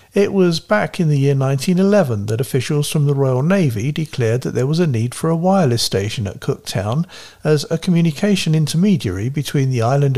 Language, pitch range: English, 115-155 Hz